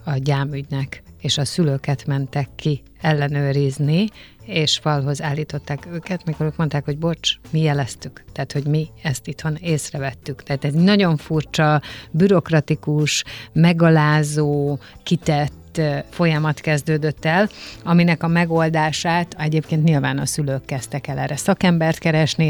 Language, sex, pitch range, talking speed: Hungarian, female, 145-165 Hz, 125 wpm